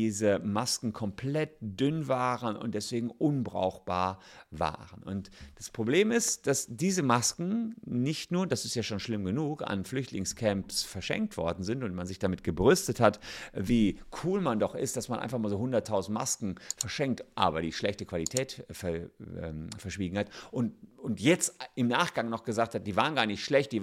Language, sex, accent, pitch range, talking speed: German, male, German, 100-130 Hz, 175 wpm